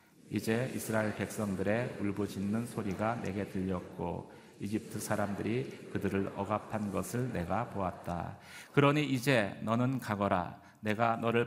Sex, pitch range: male, 100-120 Hz